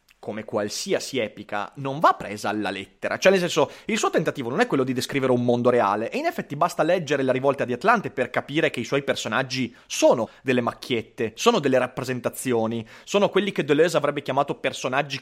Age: 30-49